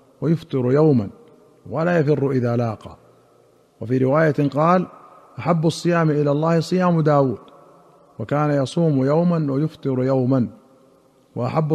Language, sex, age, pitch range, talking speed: Arabic, male, 50-69, 135-165 Hz, 105 wpm